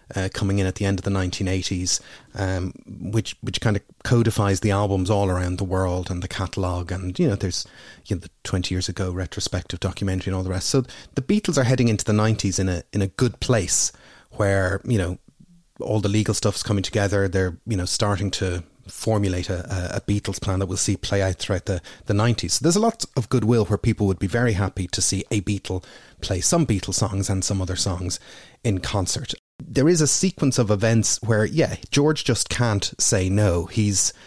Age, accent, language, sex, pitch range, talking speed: 30-49, Irish, English, male, 95-115 Hz, 215 wpm